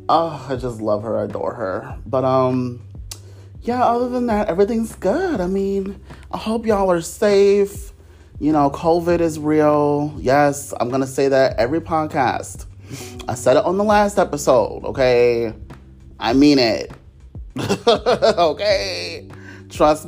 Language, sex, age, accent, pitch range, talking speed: English, male, 30-49, American, 110-160 Hz, 145 wpm